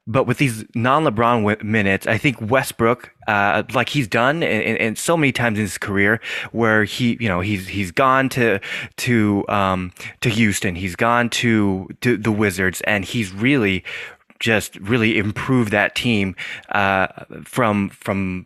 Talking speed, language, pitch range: 165 wpm, English, 100-125 Hz